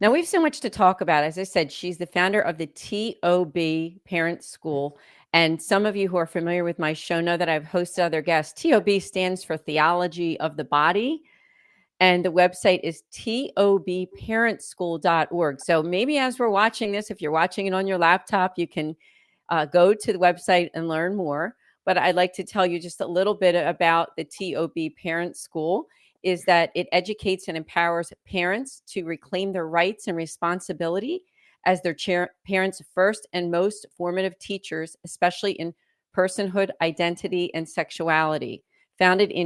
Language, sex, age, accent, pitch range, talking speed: English, female, 40-59, American, 165-195 Hz, 170 wpm